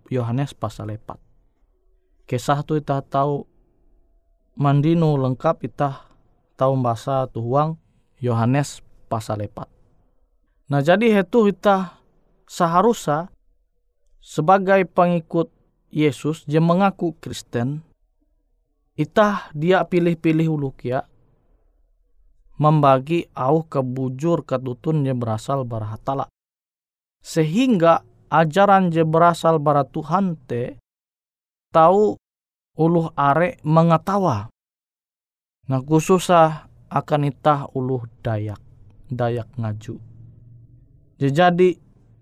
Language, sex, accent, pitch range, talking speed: Indonesian, male, native, 120-165 Hz, 80 wpm